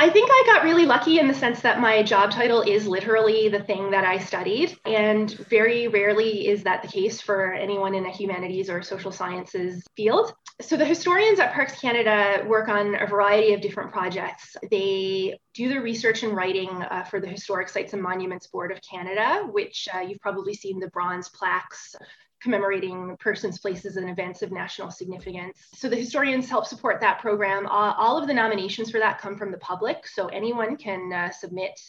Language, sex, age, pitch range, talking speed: English, female, 20-39, 185-225 Hz, 195 wpm